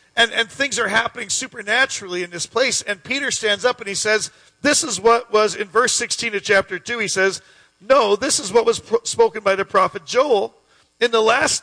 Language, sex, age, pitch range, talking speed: English, male, 40-59, 205-260 Hz, 210 wpm